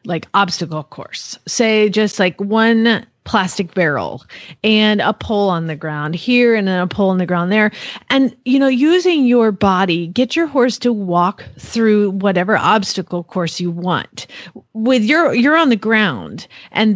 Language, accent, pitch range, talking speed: English, American, 185-250 Hz, 170 wpm